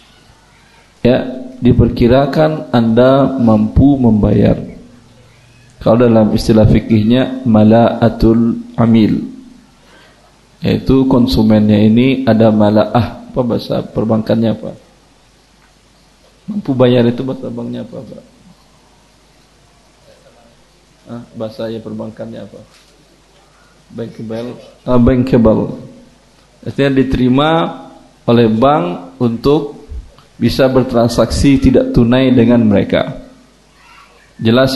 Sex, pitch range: male, 115-140 Hz